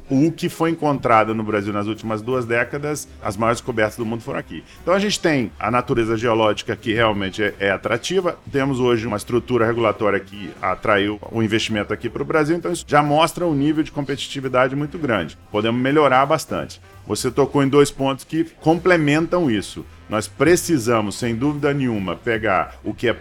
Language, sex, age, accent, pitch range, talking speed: Portuguese, male, 40-59, Brazilian, 105-145 Hz, 185 wpm